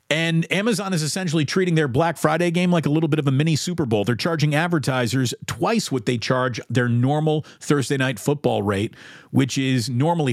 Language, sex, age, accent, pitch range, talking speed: English, male, 40-59, American, 125-165 Hz, 200 wpm